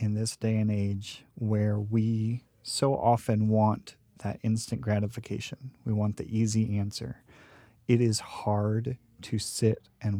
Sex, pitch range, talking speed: male, 105-120 Hz, 140 wpm